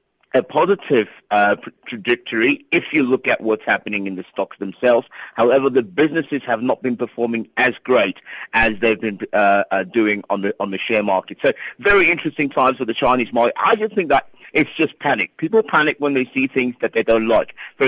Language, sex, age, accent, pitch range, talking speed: English, male, 50-69, British, 115-155 Hz, 205 wpm